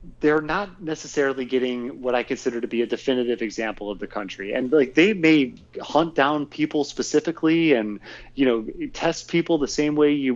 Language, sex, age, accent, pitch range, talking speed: English, male, 30-49, American, 120-155 Hz, 185 wpm